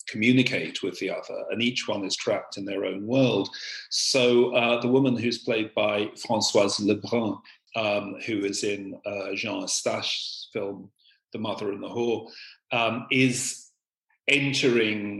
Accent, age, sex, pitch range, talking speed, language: British, 40-59, male, 100-125 Hz, 150 wpm, English